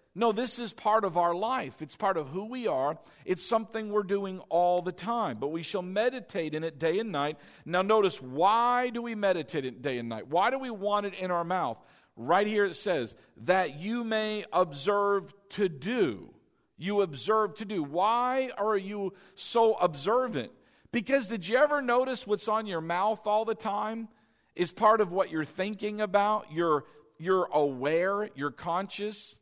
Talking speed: 185 wpm